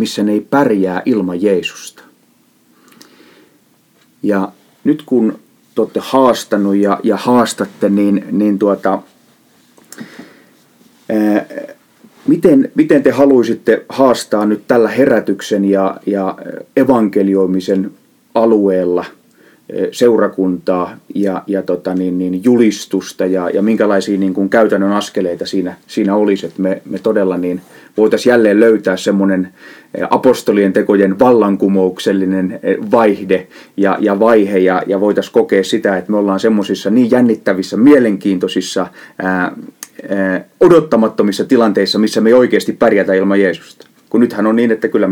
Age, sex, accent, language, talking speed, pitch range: 30-49, male, native, Finnish, 120 wpm, 95-110 Hz